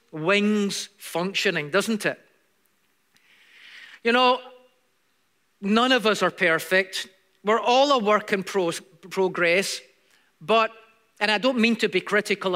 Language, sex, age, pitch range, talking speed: English, male, 40-59, 200-295 Hz, 120 wpm